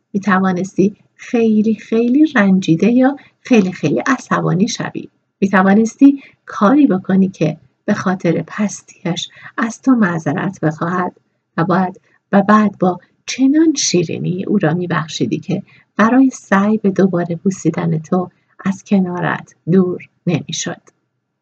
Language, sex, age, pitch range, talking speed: Persian, female, 50-69, 180-235 Hz, 120 wpm